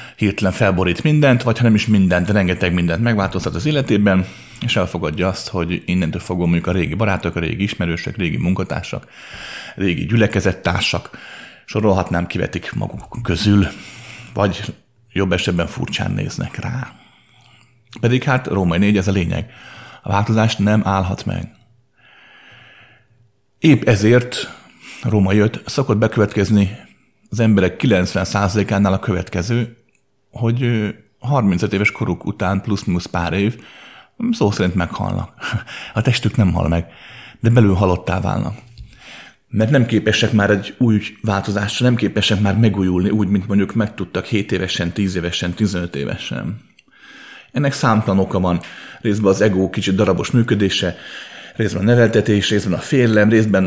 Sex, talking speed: male, 140 wpm